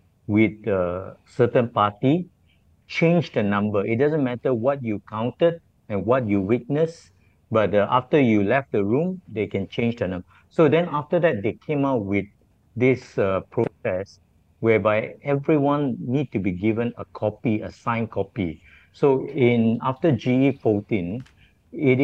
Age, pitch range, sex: 50-69, 100-130 Hz, male